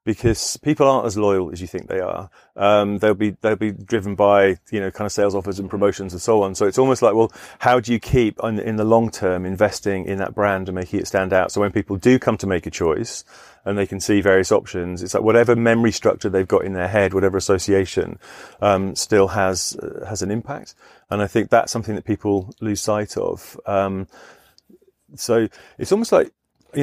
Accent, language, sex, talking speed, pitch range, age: British, English, male, 225 wpm, 100-120 Hz, 30-49